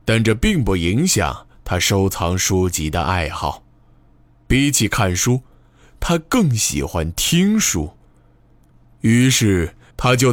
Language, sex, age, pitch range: Chinese, male, 20-39, 85-120 Hz